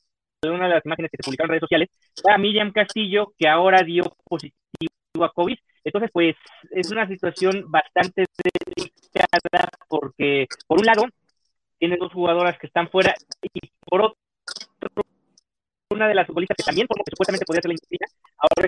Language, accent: Spanish, Mexican